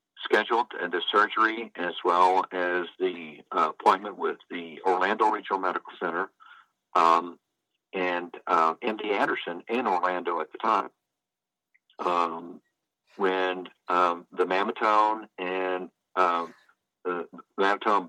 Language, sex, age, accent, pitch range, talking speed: English, male, 50-69, American, 85-100 Hz, 115 wpm